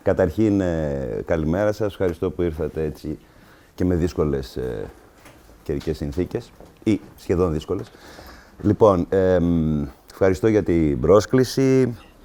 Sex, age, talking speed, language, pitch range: male, 30-49, 105 wpm, English, 80-105 Hz